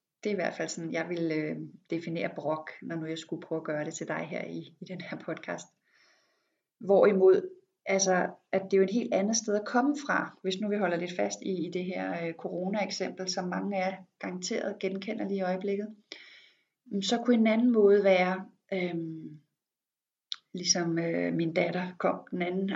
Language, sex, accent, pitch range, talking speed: Danish, female, native, 175-210 Hz, 200 wpm